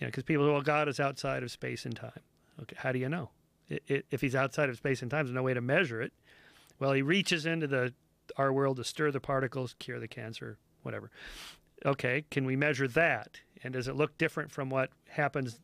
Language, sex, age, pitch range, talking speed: English, male, 40-59, 130-155 Hz, 230 wpm